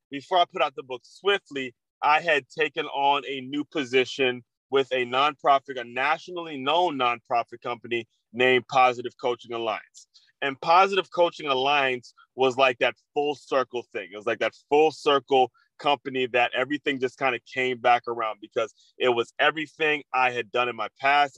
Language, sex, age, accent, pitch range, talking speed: English, male, 30-49, American, 125-145 Hz, 170 wpm